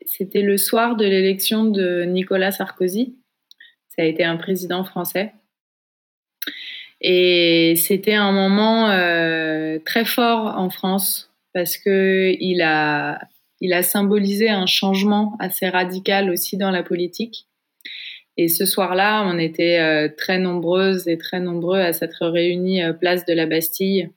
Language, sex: English, female